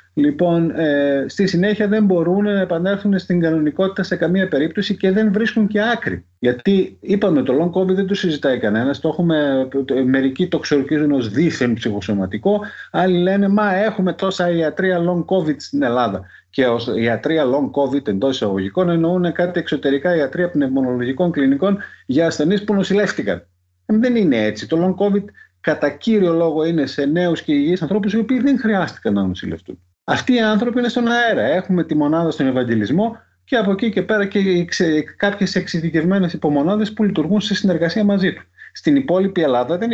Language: Greek